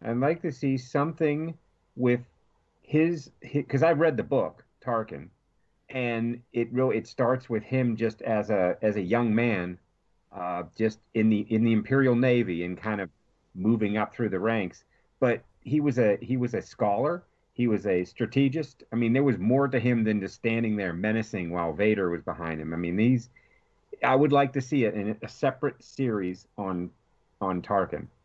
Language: English